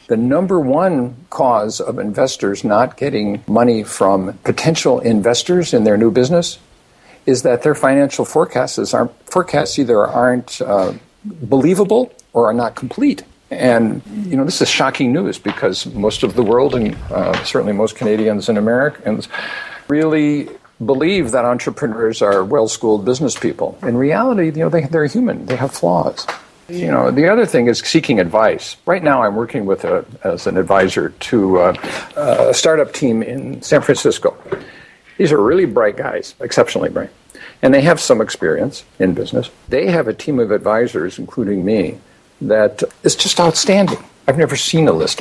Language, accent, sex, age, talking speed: English, American, male, 50-69, 160 wpm